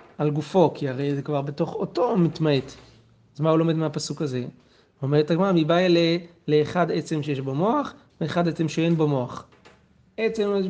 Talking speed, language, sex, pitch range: 185 wpm, Hebrew, male, 140-180 Hz